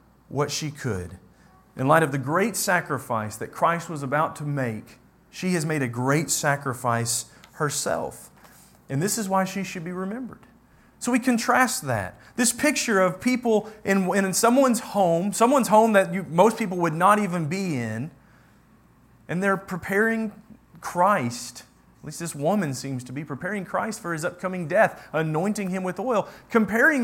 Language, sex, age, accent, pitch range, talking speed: English, male, 30-49, American, 145-225 Hz, 165 wpm